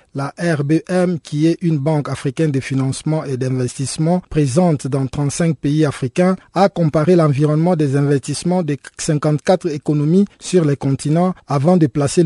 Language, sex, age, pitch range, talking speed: French, male, 50-69, 140-170 Hz, 145 wpm